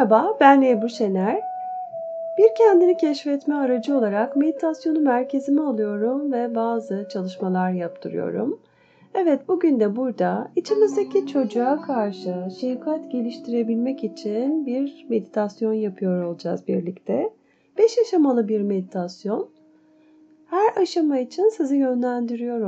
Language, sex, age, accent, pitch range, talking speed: Turkish, female, 30-49, native, 215-315 Hz, 105 wpm